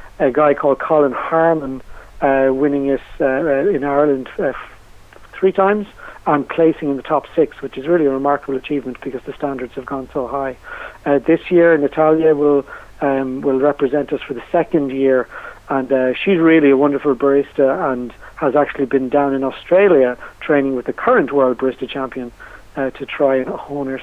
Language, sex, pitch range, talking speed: English, male, 135-150 Hz, 180 wpm